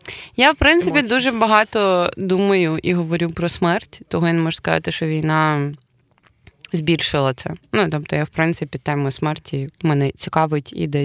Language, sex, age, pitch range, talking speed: Ukrainian, female, 20-39, 155-205 Hz, 165 wpm